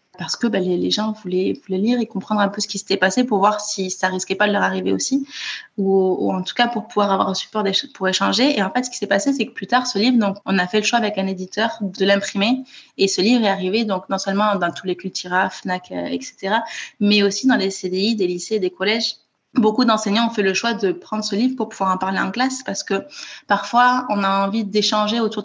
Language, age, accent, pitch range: French, 20-39, French, 195-240 Hz